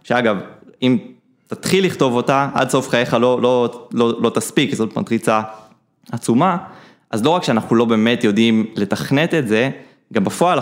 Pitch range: 110-140 Hz